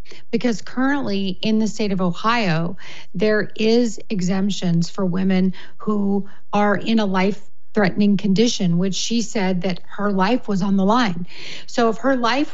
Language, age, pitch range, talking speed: English, 40-59, 190-225 Hz, 160 wpm